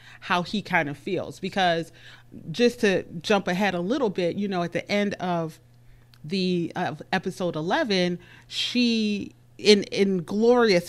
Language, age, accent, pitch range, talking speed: English, 30-49, American, 165-200 Hz, 145 wpm